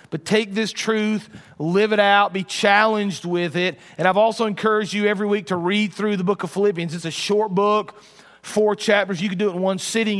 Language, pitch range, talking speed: English, 185-215 Hz, 225 wpm